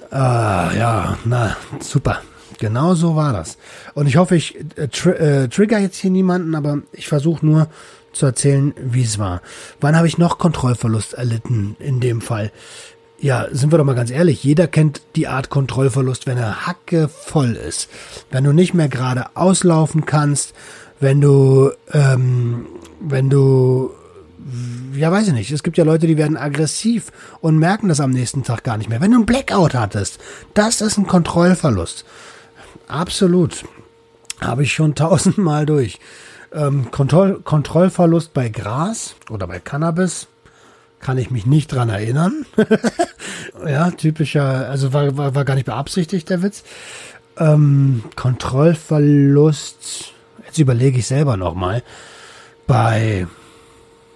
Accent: German